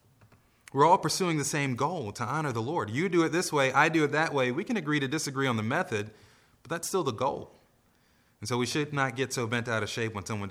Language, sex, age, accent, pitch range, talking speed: English, male, 30-49, American, 105-125 Hz, 265 wpm